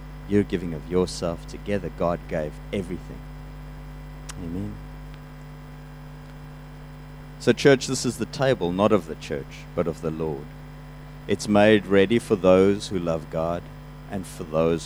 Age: 50-69